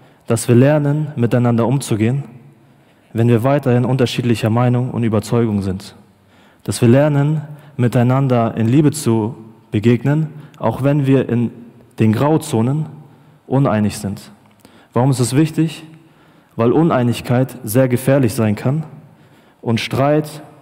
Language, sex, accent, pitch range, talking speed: German, male, German, 110-135 Hz, 120 wpm